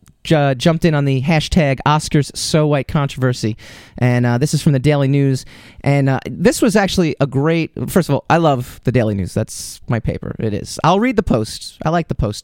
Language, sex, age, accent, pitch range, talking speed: English, male, 30-49, American, 125-175 Hz, 220 wpm